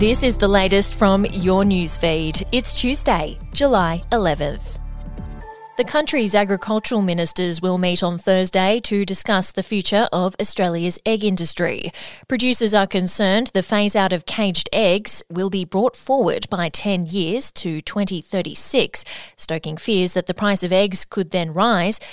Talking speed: 145 wpm